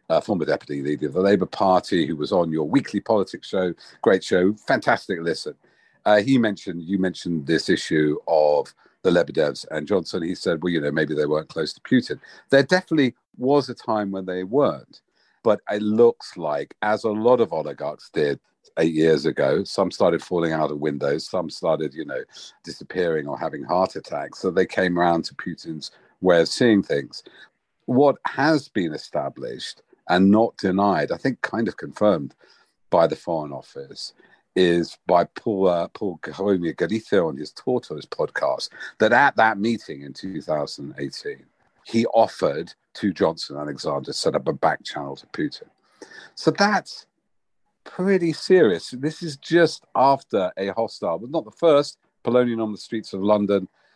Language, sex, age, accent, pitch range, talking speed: English, male, 50-69, British, 85-135 Hz, 170 wpm